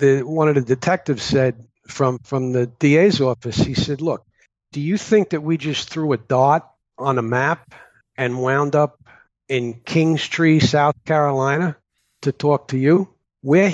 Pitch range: 120-140 Hz